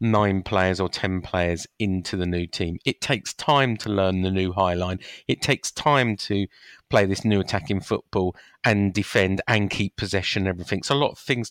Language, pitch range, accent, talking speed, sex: English, 100-135 Hz, British, 205 wpm, male